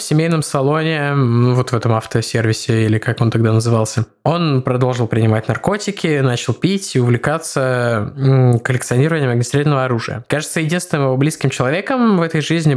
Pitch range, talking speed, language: 125-155 Hz, 145 wpm, Russian